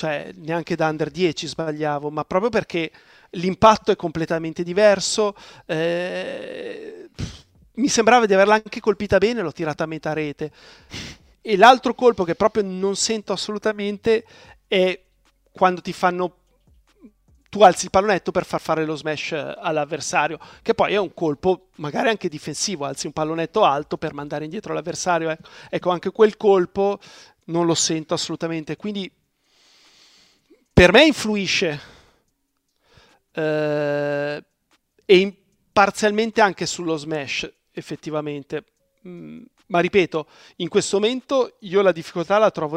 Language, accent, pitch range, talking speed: Italian, native, 160-205 Hz, 135 wpm